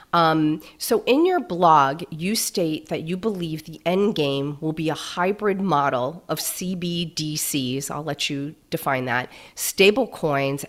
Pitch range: 140-165 Hz